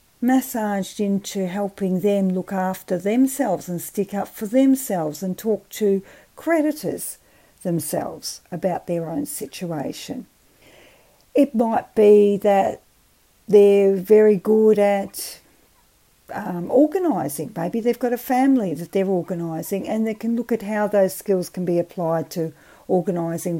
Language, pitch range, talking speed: English, 175-230 Hz, 130 wpm